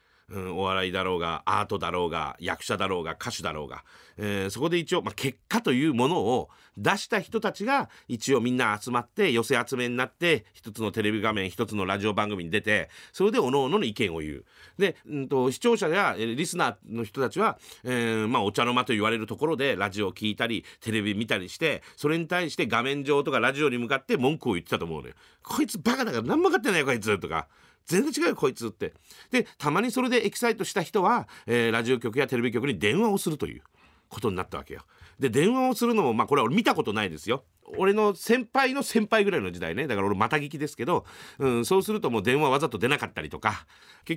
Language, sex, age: Japanese, male, 40-59